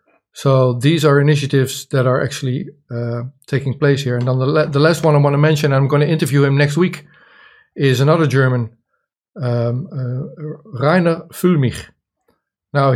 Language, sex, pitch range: English, male, 130-150 Hz